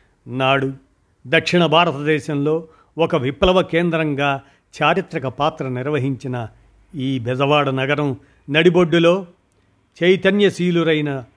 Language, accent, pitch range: Telugu, native, 130-155 Hz